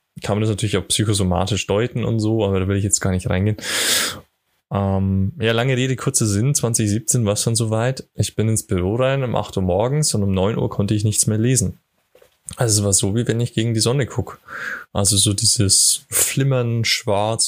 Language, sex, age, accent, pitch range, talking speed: German, male, 20-39, German, 100-120 Hz, 215 wpm